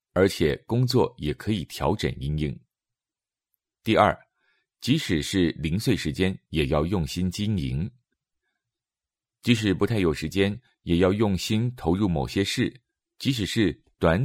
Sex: male